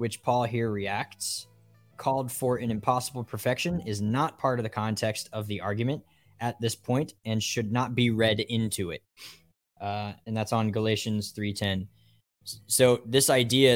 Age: 10-29